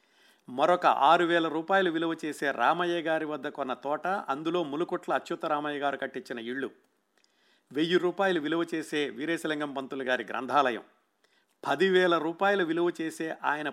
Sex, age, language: male, 50-69, Telugu